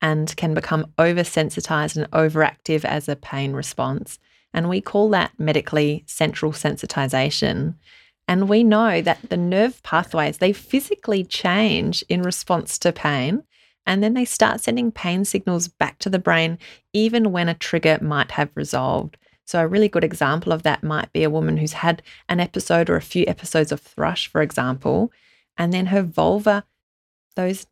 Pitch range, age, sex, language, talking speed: 150-190 Hz, 20-39, female, English, 165 wpm